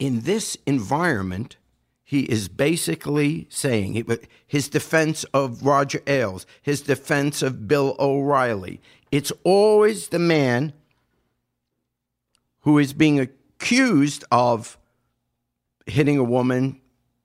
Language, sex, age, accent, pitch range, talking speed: English, male, 50-69, American, 120-145 Hz, 100 wpm